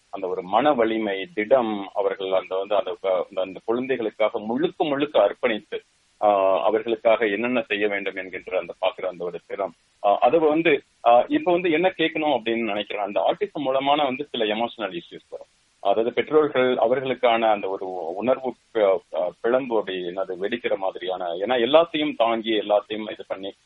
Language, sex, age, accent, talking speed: Tamil, male, 30-49, native, 135 wpm